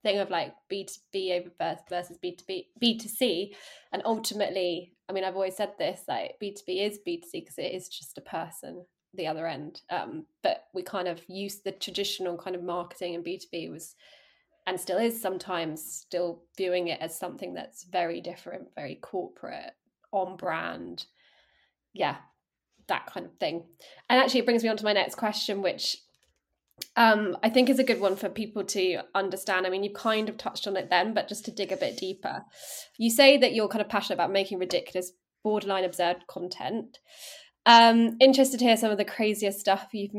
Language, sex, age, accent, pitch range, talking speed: English, female, 20-39, British, 185-215 Hz, 185 wpm